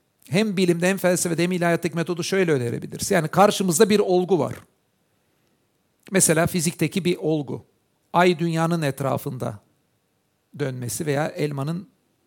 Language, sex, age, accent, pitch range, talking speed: Turkish, male, 60-79, native, 140-180 Hz, 115 wpm